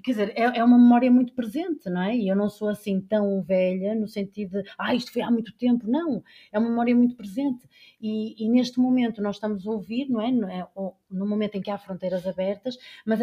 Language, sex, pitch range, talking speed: Portuguese, female, 190-250 Hz, 225 wpm